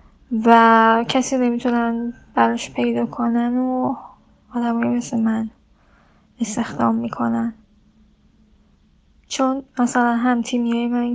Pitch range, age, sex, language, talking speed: 225-250 Hz, 10-29, female, Persian, 95 wpm